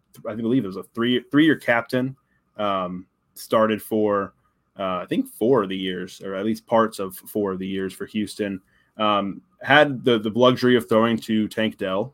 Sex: male